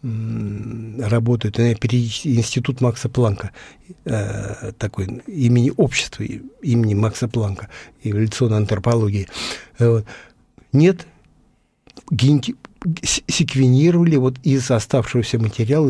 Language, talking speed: Russian, 80 wpm